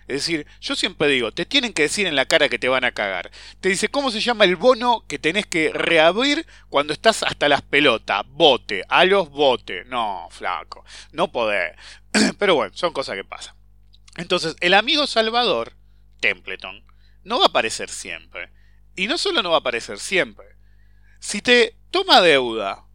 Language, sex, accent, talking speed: English, male, Argentinian, 180 wpm